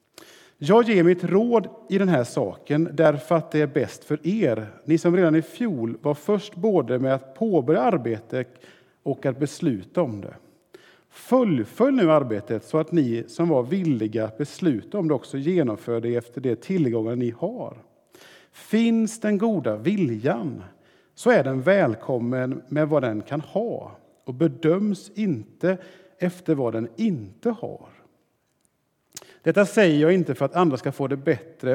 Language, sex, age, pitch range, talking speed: Swedish, male, 50-69, 125-180 Hz, 160 wpm